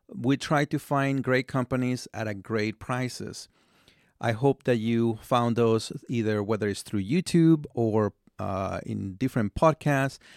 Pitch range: 100-130 Hz